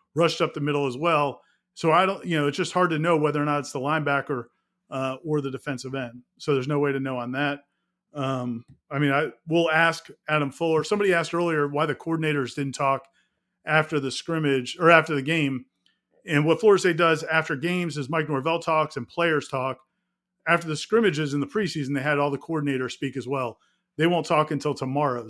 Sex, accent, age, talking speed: male, American, 40-59, 215 wpm